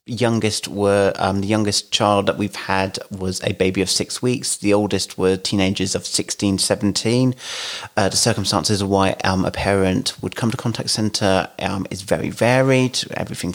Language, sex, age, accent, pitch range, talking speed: English, male, 30-49, British, 100-115 Hz, 175 wpm